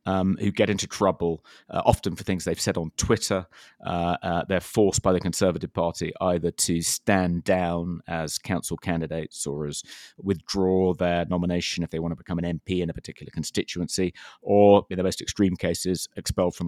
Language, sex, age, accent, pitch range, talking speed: English, male, 30-49, British, 85-100 Hz, 185 wpm